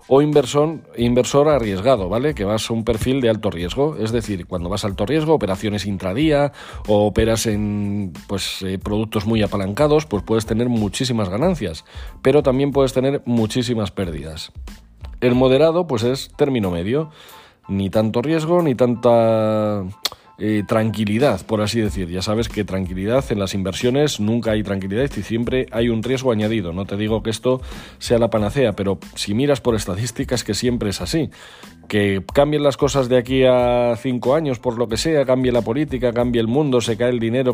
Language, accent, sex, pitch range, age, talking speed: Spanish, Spanish, male, 105-130 Hz, 40-59, 180 wpm